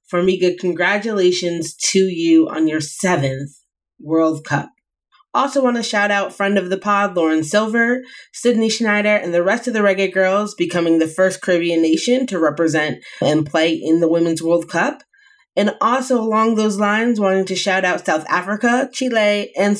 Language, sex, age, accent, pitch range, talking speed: English, female, 30-49, American, 170-225 Hz, 170 wpm